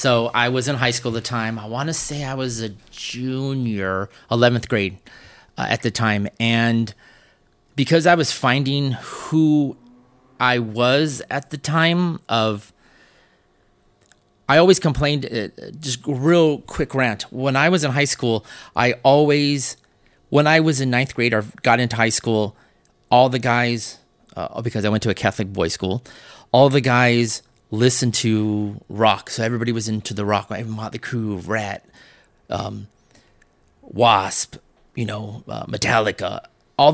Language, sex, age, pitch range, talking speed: English, male, 30-49, 110-130 Hz, 155 wpm